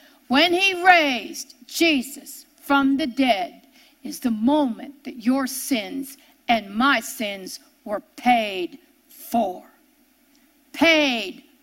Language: English